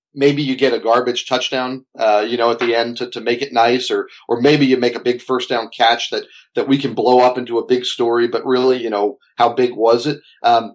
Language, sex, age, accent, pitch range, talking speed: English, male, 40-59, American, 120-155 Hz, 255 wpm